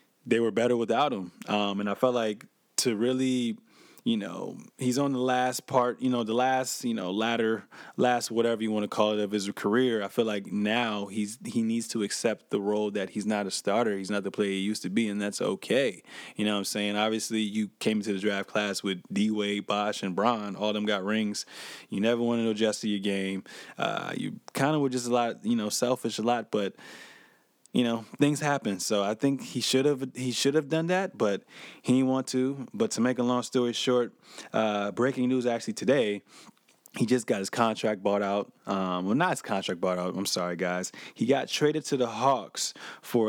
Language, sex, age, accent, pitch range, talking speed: English, male, 20-39, American, 105-125 Hz, 225 wpm